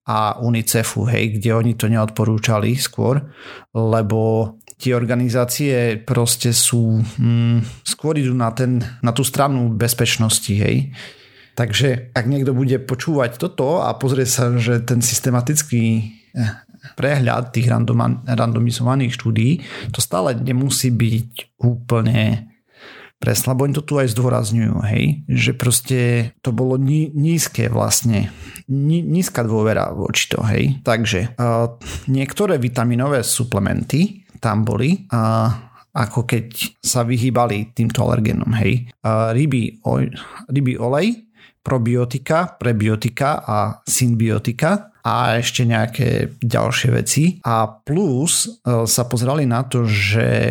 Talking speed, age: 115 wpm, 40-59